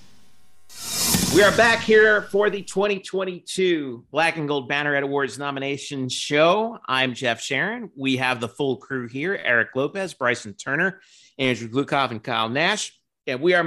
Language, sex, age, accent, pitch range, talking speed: English, male, 50-69, American, 135-185 Hz, 160 wpm